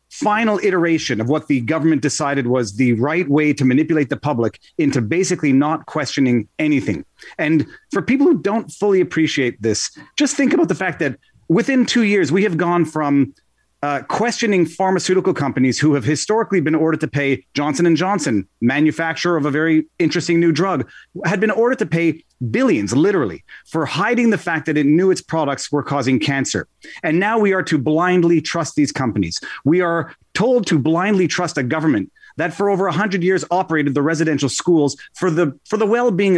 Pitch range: 145-190 Hz